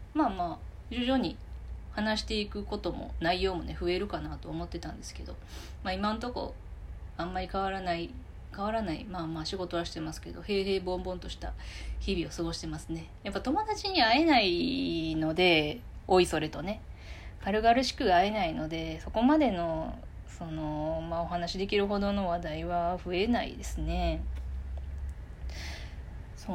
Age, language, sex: 20-39, Japanese, female